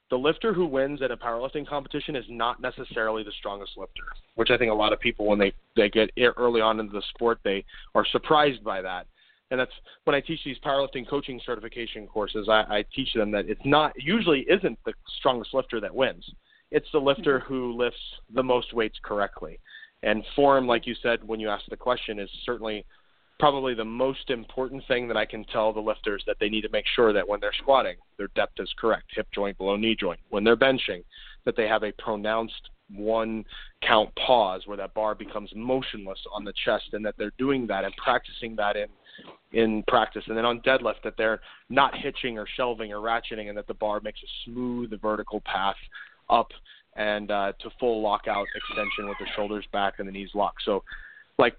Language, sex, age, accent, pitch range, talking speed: English, male, 30-49, American, 105-130 Hz, 205 wpm